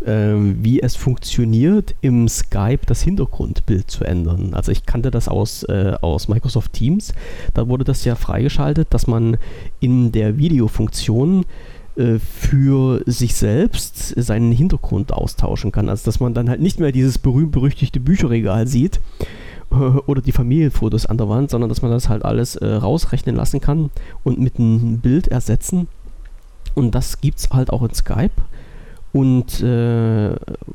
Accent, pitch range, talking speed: German, 110-140 Hz, 155 wpm